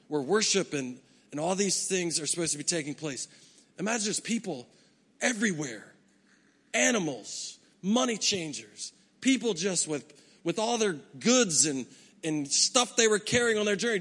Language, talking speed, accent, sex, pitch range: English, 155 wpm, American, male, 140-215 Hz